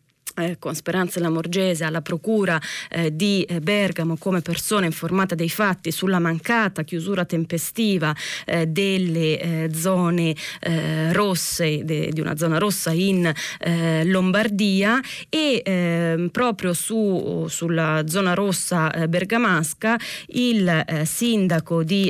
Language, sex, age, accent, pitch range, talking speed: Italian, female, 20-39, native, 165-200 Hz, 130 wpm